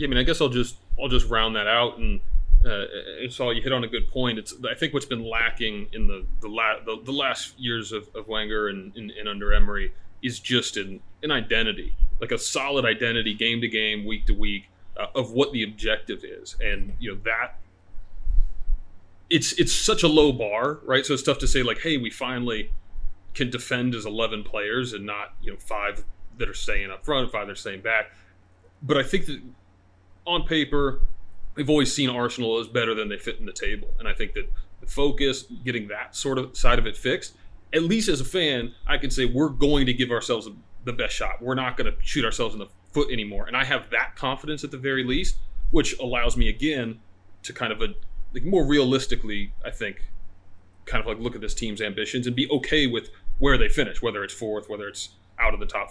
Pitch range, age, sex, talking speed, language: 100-130 Hz, 30-49, male, 225 wpm, English